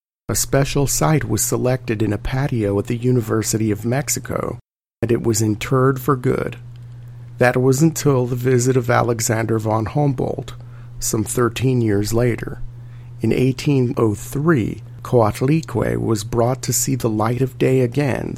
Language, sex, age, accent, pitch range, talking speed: English, male, 50-69, American, 115-135 Hz, 145 wpm